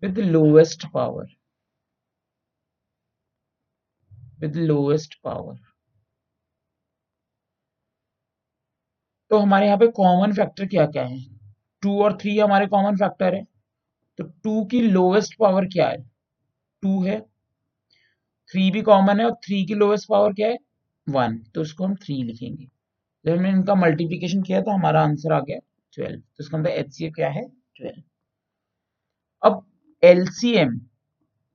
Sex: male